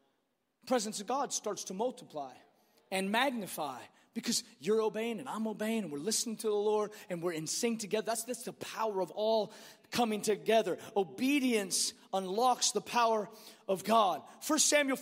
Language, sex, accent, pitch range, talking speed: English, male, American, 210-260 Hz, 170 wpm